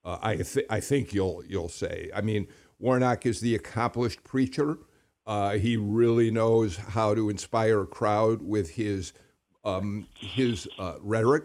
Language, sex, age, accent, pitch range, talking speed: English, male, 60-79, American, 105-140 Hz, 155 wpm